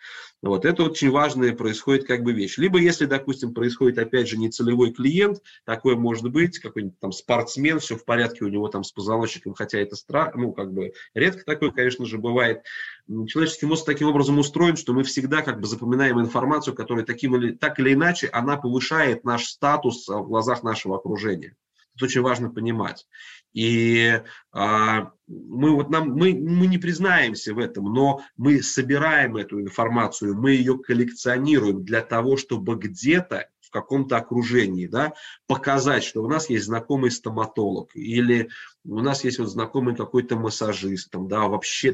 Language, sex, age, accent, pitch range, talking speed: Russian, male, 20-39, native, 110-140 Hz, 155 wpm